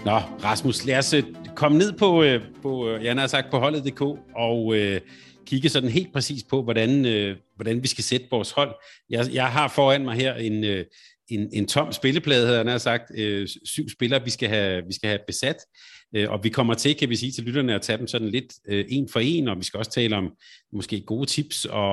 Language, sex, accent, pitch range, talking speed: Danish, male, native, 110-135 Hz, 230 wpm